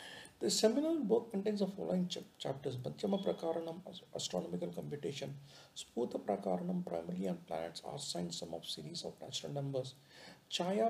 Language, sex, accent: English, male, Indian